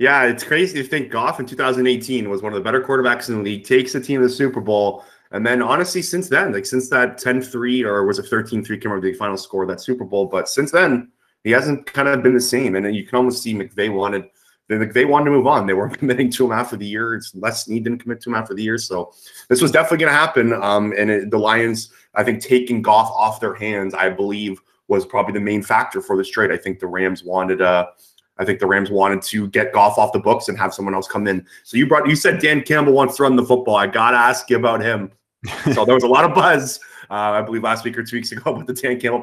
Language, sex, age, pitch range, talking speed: English, male, 30-49, 105-130 Hz, 270 wpm